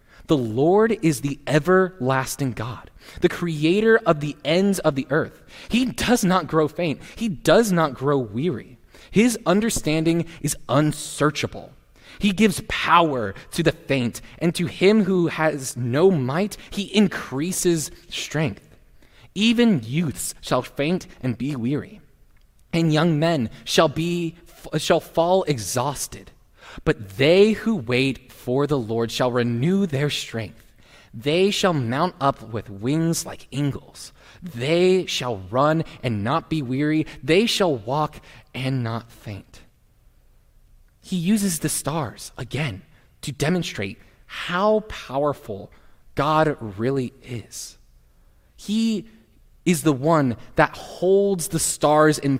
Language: English